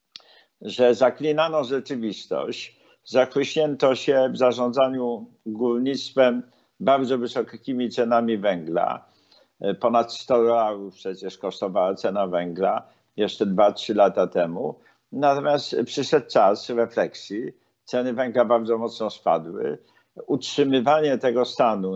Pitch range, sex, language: 115-140 Hz, male, Polish